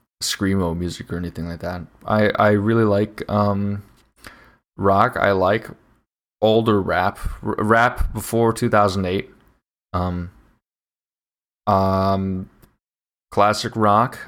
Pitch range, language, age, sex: 95-120 Hz, English, 20-39, male